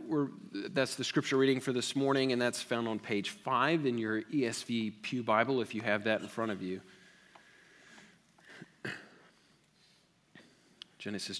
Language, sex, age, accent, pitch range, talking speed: English, male, 40-59, American, 120-165 Hz, 145 wpm